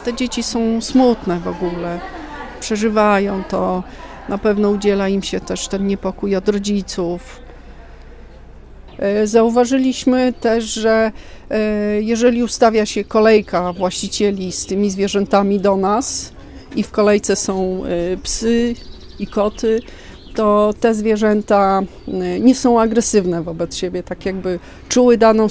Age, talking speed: 40-59, 120 wpm